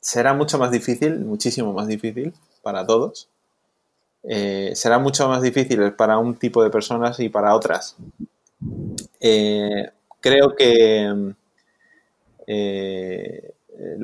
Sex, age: male, 20-39